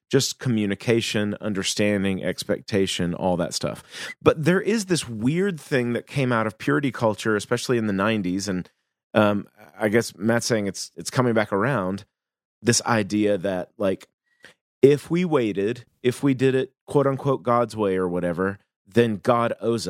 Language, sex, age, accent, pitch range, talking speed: English, male, 30-49, American, 100-130 Hz, 165 wpm